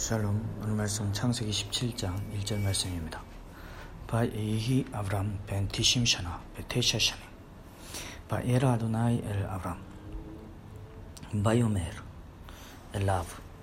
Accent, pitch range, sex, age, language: native, 100-130 Hz, male, 40-59, Korean